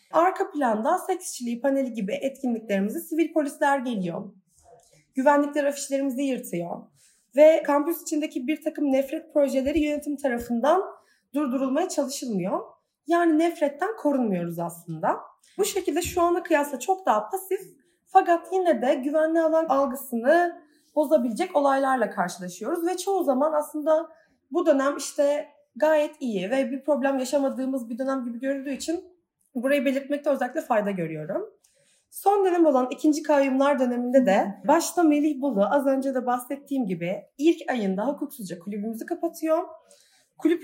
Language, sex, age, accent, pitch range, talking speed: Turkish, female, 30-49, native, 255-320 Hz, 130 wpm